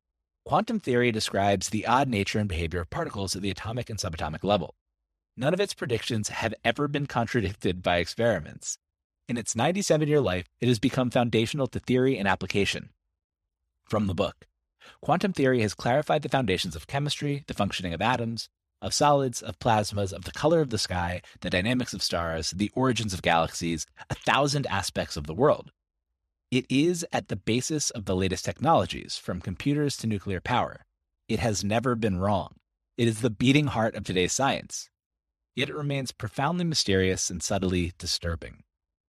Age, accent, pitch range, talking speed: 30-49, American, 85-125 Hz, 170 wpm